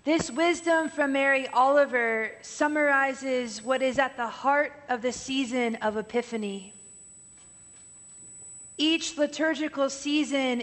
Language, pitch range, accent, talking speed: English, 235-285 Hz, American, 105 wpm